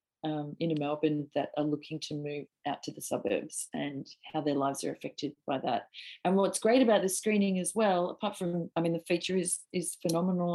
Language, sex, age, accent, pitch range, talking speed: English, female, 40-59, Australian, 150-185 Hz, 210 wpm